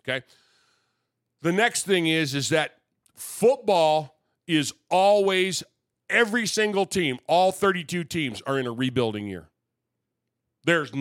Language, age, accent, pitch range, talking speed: English, 40-59, American, 135-180 Hz, 120 wpm